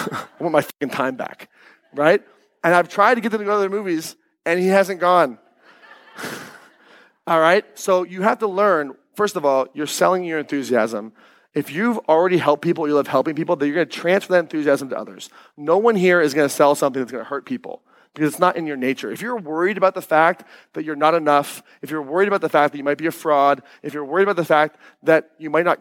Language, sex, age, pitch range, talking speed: English, male, 30-49, 150-215 Hz, 240 wpm